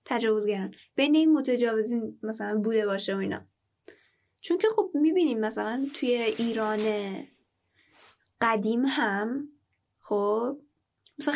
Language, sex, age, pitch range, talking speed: Persian, female, 10-29, 225-315 Hz, 110 wpm